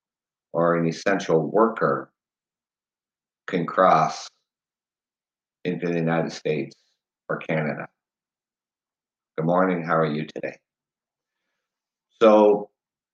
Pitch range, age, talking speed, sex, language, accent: 80-95 Hz, 50-69, 85 wpm, male, English, American